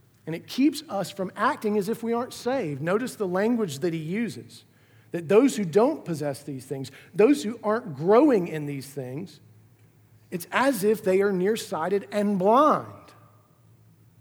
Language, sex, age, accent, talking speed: English, male, 40-59, American, 165 wpm